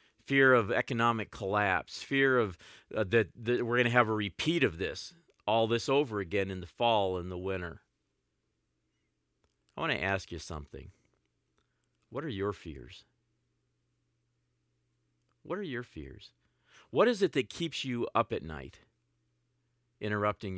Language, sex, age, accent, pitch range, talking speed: English, male, 50-69, American, 90-120 Hz, 150 wpm